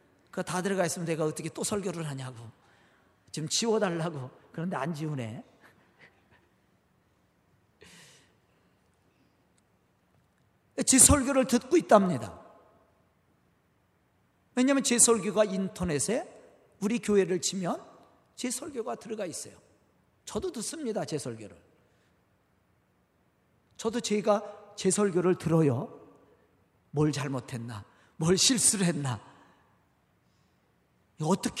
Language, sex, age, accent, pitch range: Korean, male, 40-59, native, 165-270 Hz